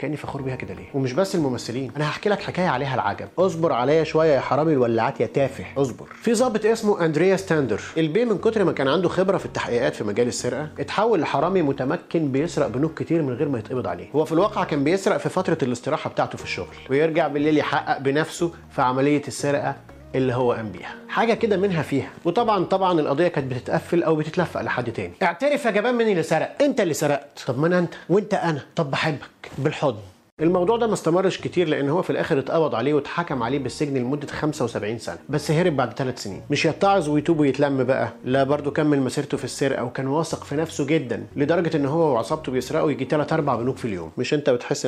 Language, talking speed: Arabic, 205 wpm